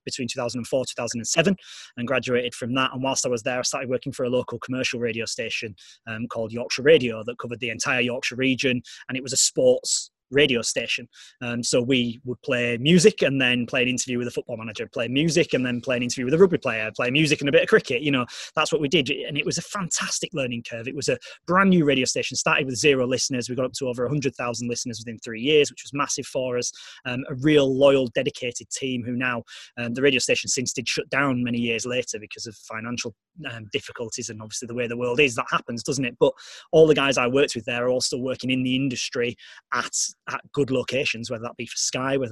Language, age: English, 20-39